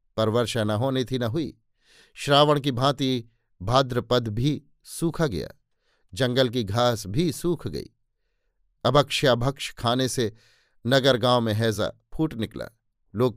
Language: Hindi